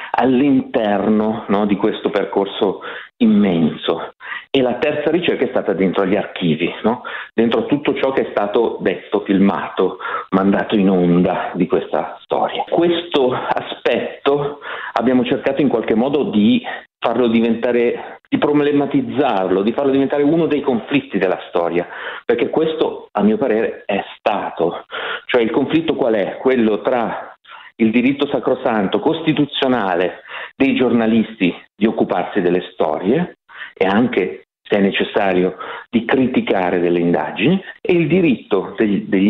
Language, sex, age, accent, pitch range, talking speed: Italian, male, 40-59, native, 100-155 Hz, 135 wpm